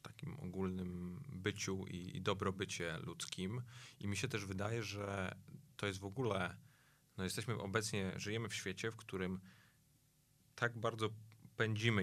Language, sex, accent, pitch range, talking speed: Polish, male, native, 95-110 Hz, 140 wpm